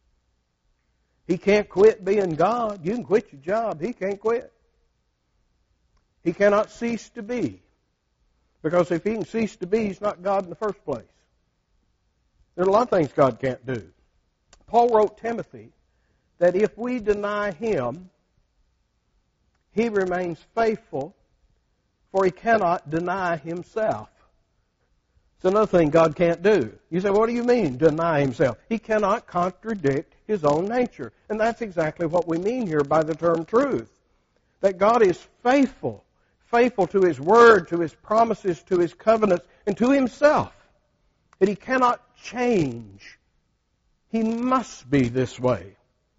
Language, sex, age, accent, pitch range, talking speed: English, male, 60-79, American, 145-215 Hz, 150 wpm